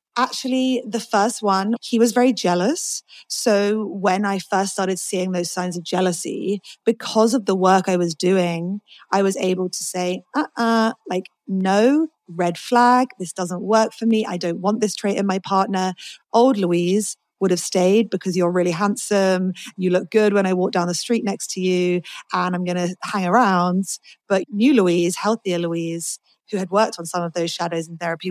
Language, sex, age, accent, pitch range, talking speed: English, female, 30-49, British, 180-220 Hz, 195 wpm